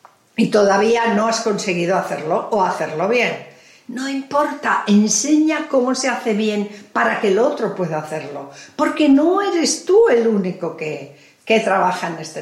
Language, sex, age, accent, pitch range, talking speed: Spanish, female, 50-69, Spanish, 180-240 Hz, 160 wpm